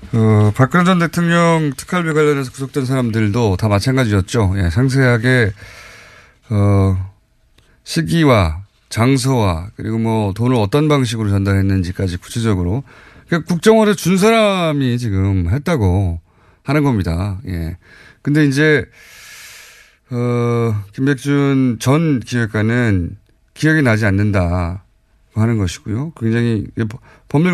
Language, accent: Korean, native